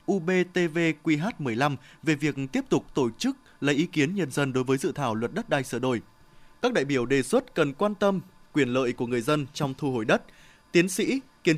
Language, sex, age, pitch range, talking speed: Vietnamese, male, 20-39, 130-175 Hz, 220 wpm